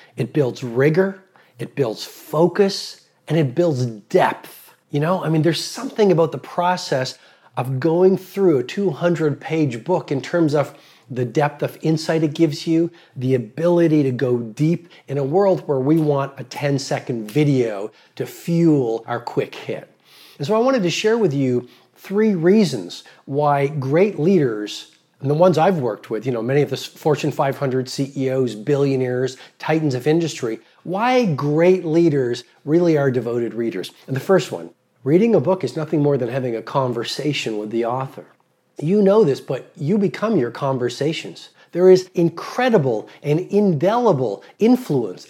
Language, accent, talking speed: English, American, 165 wpm